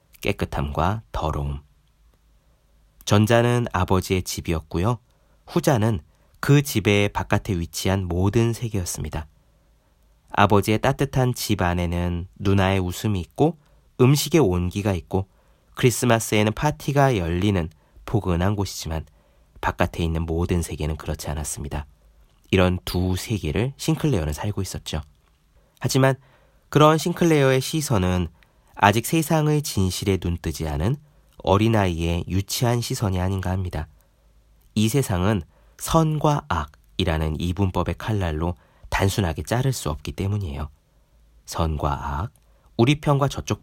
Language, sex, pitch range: Korean, male, 80-120 Hz